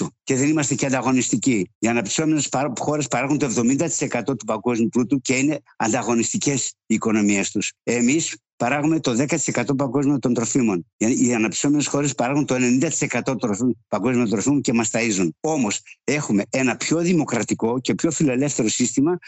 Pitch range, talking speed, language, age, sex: 115-145 Hz, 150 wpm, Greek, 60-79, male